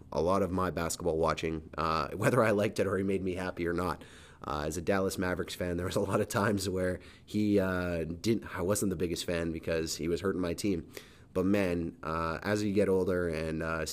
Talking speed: 235 wpm